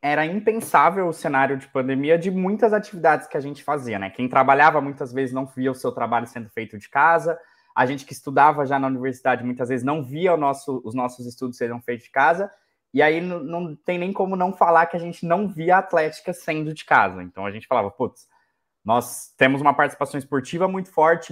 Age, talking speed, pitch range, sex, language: 20-39, 215 wpm, 130-175 Hz, male, Portuguese